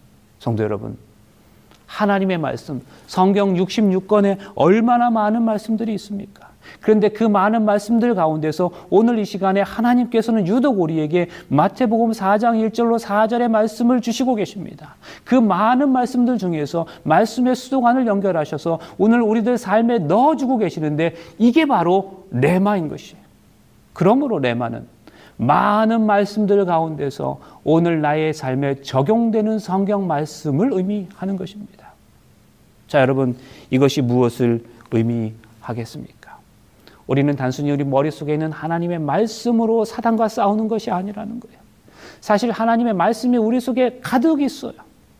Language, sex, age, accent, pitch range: Korean, male, 40-59, native, 155-230 Hz